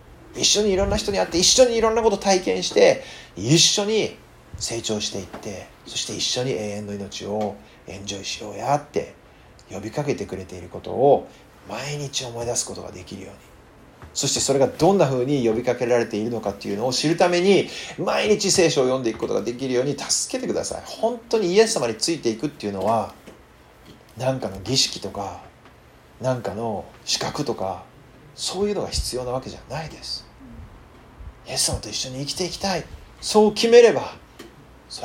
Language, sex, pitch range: Japanese, male, 100-155 Hz